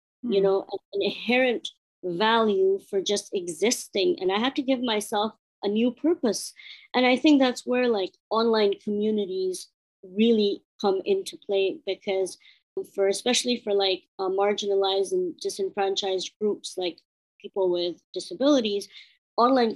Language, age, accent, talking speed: English, 30-49, American, 135 wpm